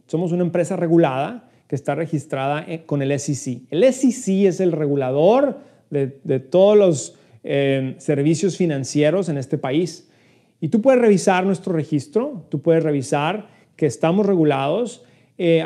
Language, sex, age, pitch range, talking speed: Spanish, male, 30-49, 145-185 Hz, 145 wpm